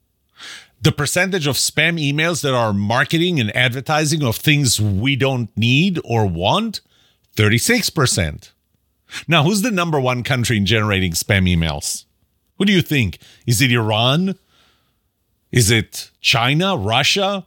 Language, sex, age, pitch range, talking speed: English, male, 40-59, 105-165 Hz, 135 wpm